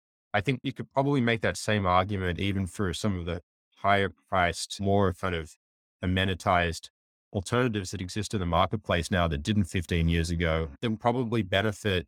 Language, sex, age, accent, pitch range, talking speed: English, male, 20-39, Australian, 80-100 Hz, 175 wpm